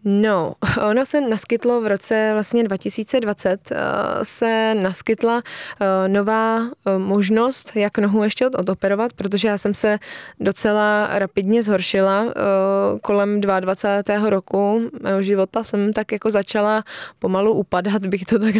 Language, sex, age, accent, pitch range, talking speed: Czech, female, 20-39, native, 195-225 Hz, 120 wpm